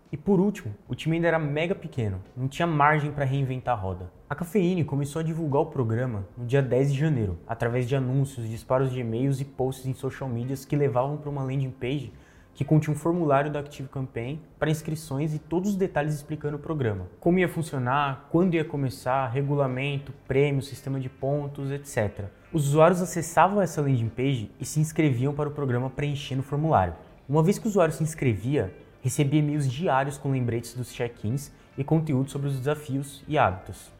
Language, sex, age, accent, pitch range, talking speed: Portuguese, male, 20-39, Brazilian, 130-155 Hz, 190 wpm